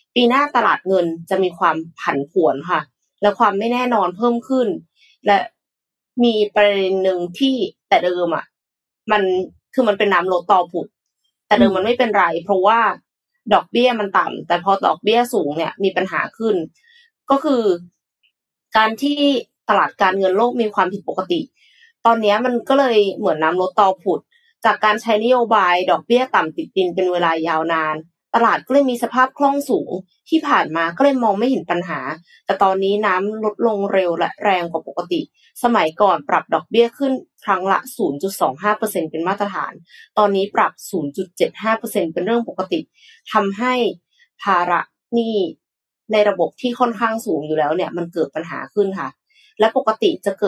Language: Thai